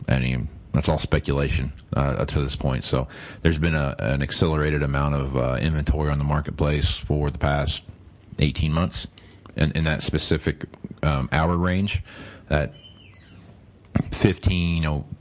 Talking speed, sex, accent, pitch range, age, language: 160 wpm, male, American, 70-85 Hz, 40-59, English